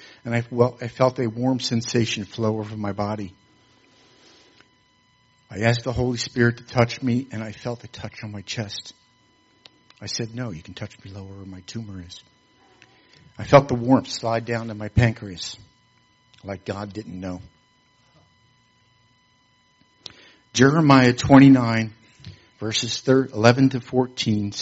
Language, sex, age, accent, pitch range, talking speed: English, male, 60-79, American, 110-130 Hz, 140 wpm